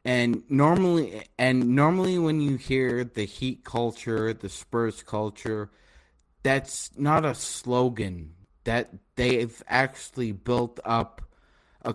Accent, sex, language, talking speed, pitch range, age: American, male, English, 115 wpm, 90-130 Hz, 30-49